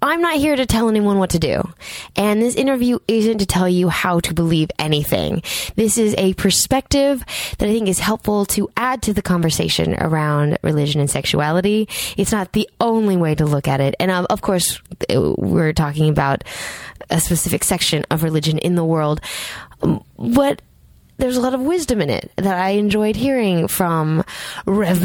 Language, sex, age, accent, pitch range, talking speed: English, female, 20-39, American, 160-215 Hz, 180 wpm